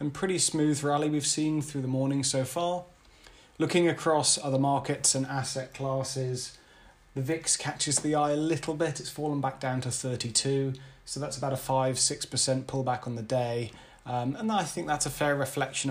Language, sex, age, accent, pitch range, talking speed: English, male, 30-49, British, 130-145 Hz, 190 wpm